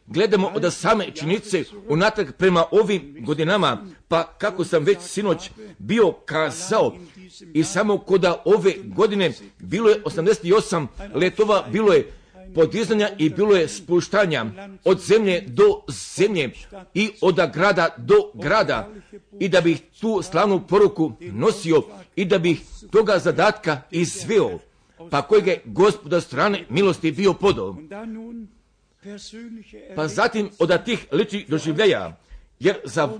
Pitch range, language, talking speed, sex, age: 170-215 Hz, Croatian, 125 wpm, male, 50-69